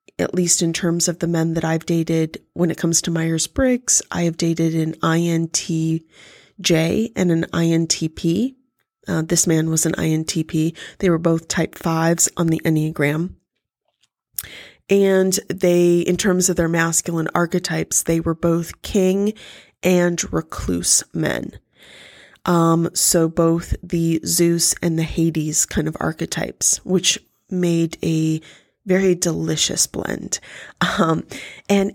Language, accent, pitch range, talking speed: English, American, 165-185 Hz, 135 wpm